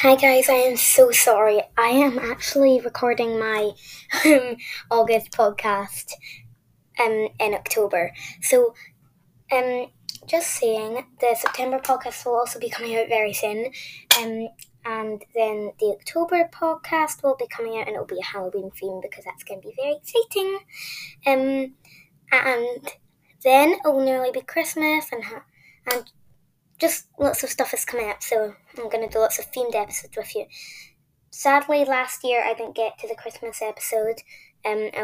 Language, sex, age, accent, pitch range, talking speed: English, female, 10-29, British, 215-275 Hz, 165 wpm